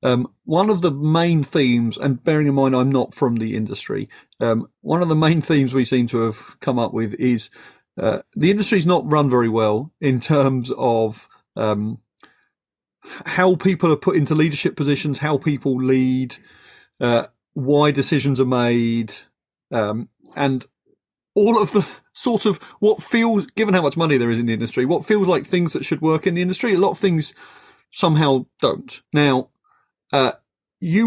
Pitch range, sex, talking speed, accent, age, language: 130-175 Hz, male, 180 wpm, British, 40-59, English